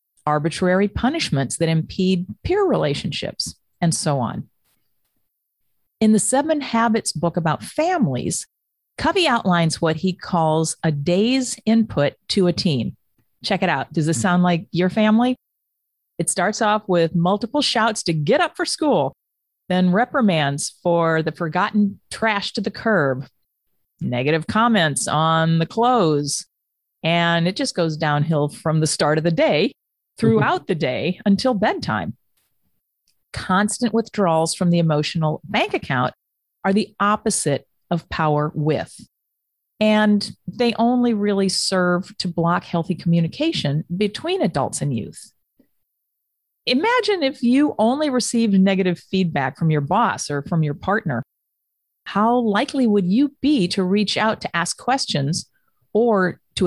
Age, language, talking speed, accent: 40-59, English, 140 wpm, American